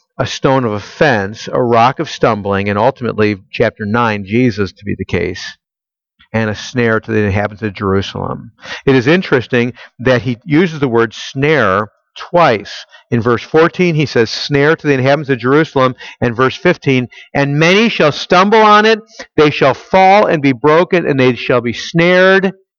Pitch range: 130-185 Hz